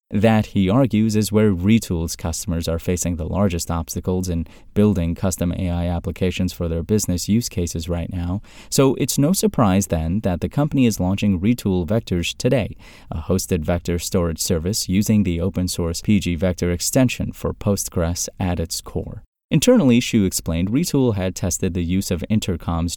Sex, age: male, 30-49